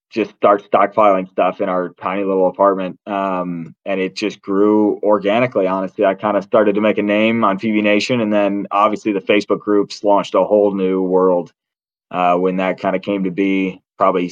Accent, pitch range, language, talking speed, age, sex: American, 100-110 Hz, English, 195 wpm, 20-39, male